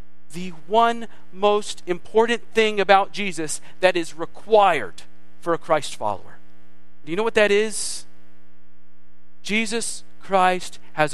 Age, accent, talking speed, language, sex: 40-59, American, 125 wpm, English, male